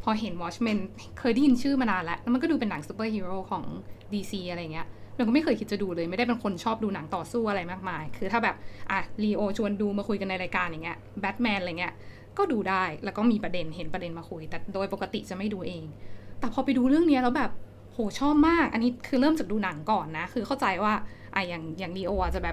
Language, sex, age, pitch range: Thai, female, 10-29, 185-240 Hz